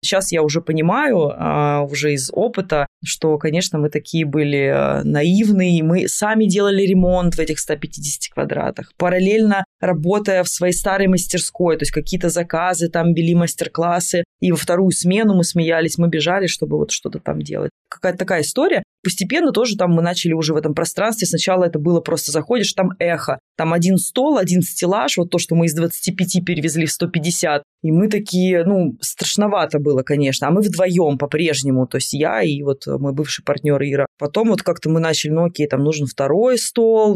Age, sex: 20-39, female